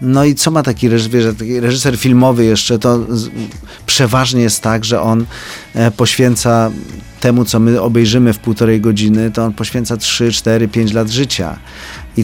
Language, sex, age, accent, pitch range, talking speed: Polish, male, 40-59, native, 110-125 Hz, 155 wpm